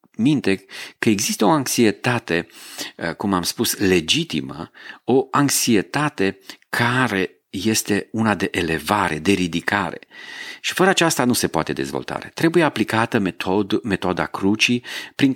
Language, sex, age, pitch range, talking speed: Romanian, male, 40-59, 85-110 Hz, 115 wpm